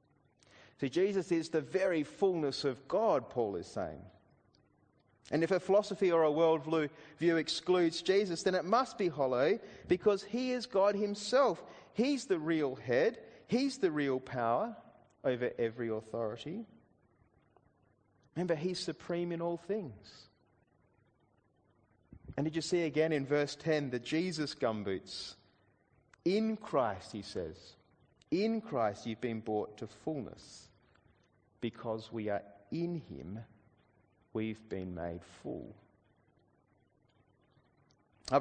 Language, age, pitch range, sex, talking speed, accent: English, 30-49, 115-175 Hz, male, 125 wpm, Australian